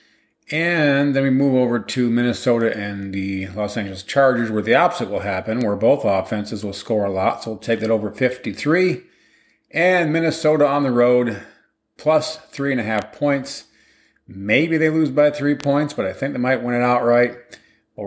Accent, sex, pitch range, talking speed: American, male, 110-135 Hz, 175 wpm